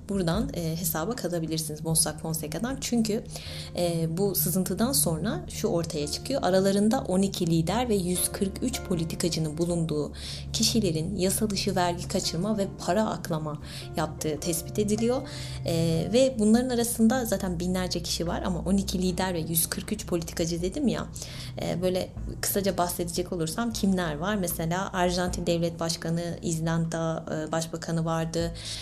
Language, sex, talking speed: Turkish, female, 120 wpm